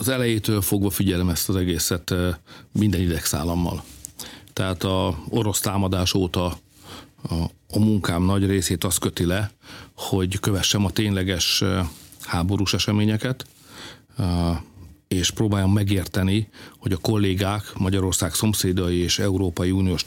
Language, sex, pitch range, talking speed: Hungarian, male, 90-110 Hz, 115 wpm